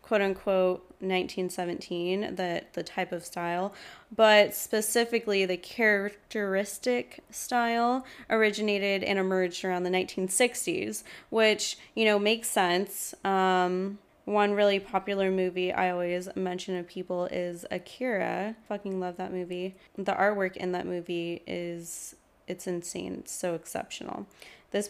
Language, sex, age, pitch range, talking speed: English, female, 20-39, 180-205 Hz, 125 wpm